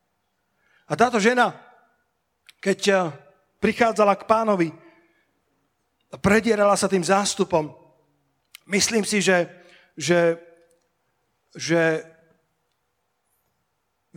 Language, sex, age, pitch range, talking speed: Slovak, male, 40-59, 170-210 Hz, 75 wpm